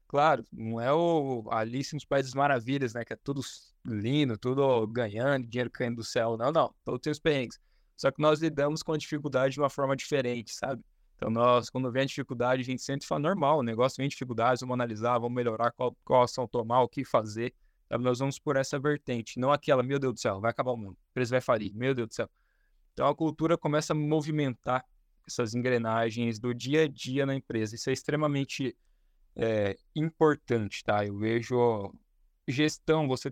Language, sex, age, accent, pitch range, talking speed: Portuguese, male, 20-39, Brazilian, 115-140 Hz, 200 wpm